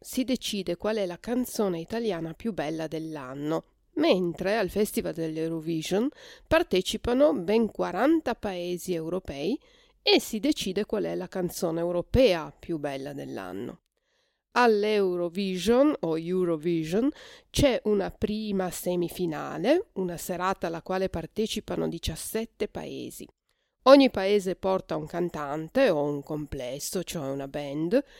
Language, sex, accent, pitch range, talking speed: Italian, female, native, 170-235 Hz, 115 wpm